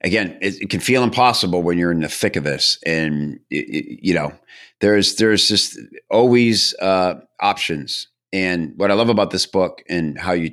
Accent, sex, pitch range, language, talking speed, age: American, male, 80-105 Hz, English, 195 wpm, 50-69